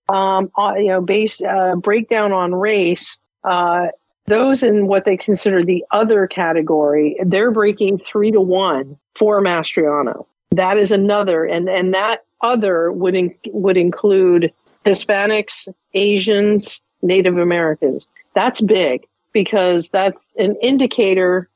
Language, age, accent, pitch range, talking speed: English, 50-69, American, 180-210 Hz, 125 wpm